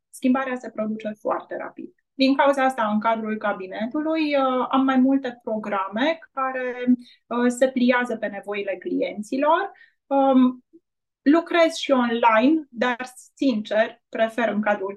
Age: 20-39